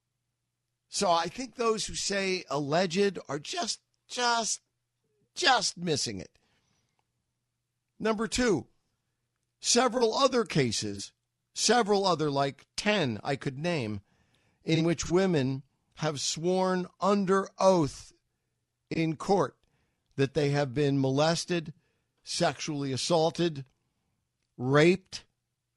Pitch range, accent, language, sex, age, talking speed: 120-170 Hz, American, English, male, 50-69, 100 wpm